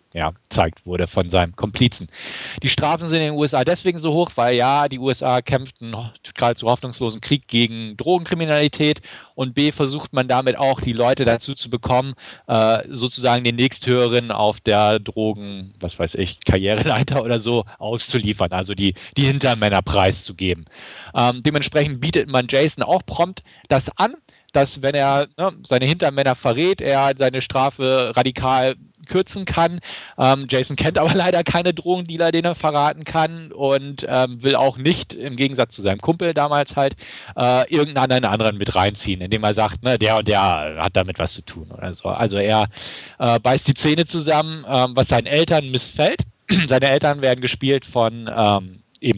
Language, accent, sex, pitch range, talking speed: German, German, male, 110-145 Hz, 170 wpm